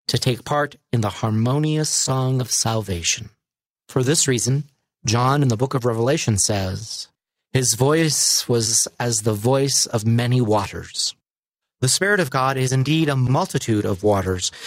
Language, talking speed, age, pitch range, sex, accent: English, 155 wpm, 40-59, 120-155 Hz, male, American